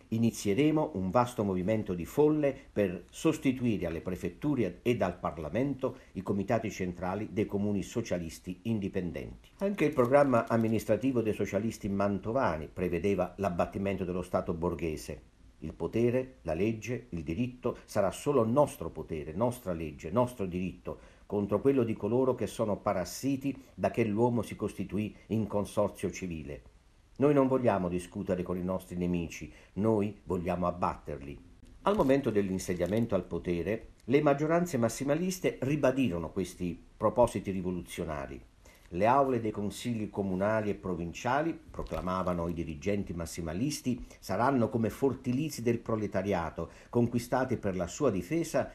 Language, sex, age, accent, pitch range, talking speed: Italian, male, 50-69, native, 90-120 Hz, 130 wpm